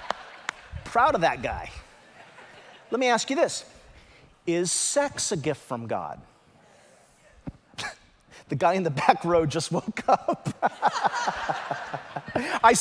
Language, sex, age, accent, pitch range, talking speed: English, male, 40-59, American, 140-220 Hz, 115 wpm